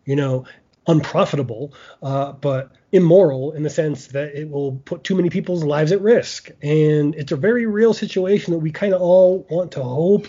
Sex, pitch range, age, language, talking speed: male, 140-180 Hz, 30-49, English, 190 wpm